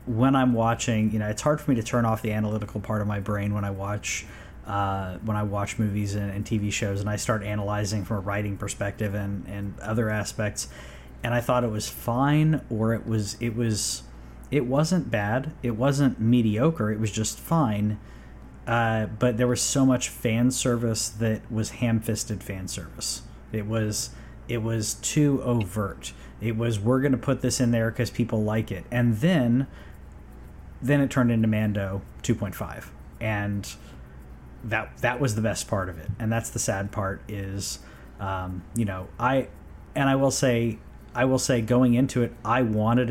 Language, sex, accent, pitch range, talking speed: English, male, American, 100-120 Hz, 190 wpm